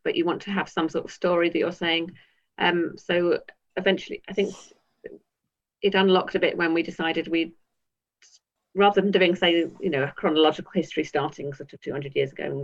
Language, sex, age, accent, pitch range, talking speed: English, female, 40-59, British, 145-185 Hz, 195 wpm